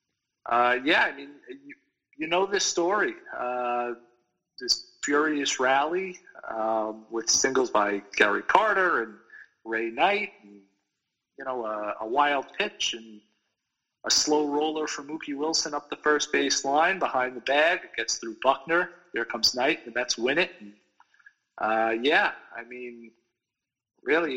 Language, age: English, 40-59